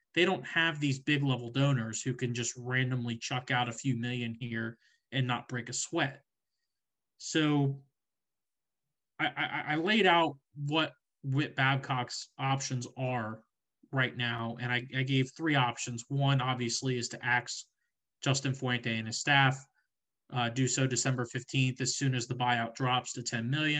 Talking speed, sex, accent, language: 155 wpm, male, American, English